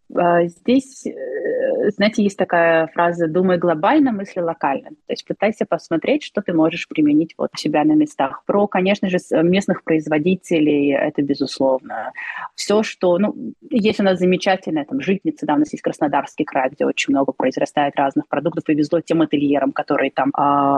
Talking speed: 160 wpm